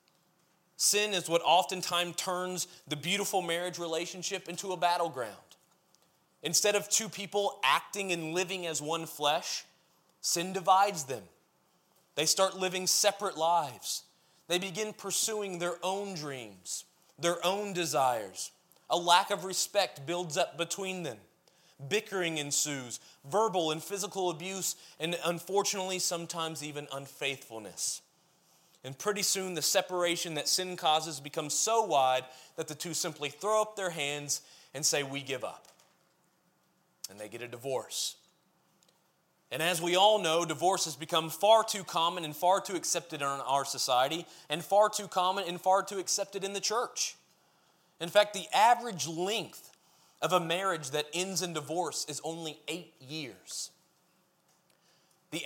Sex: male